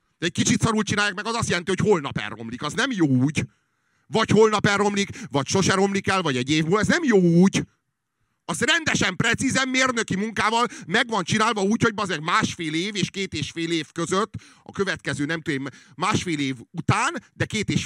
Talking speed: 200 wpm